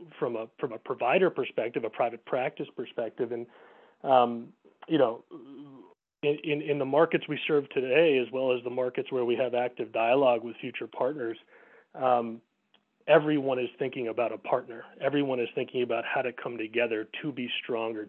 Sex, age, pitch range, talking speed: male, 30-49, 115-150 Hz, 175 wpm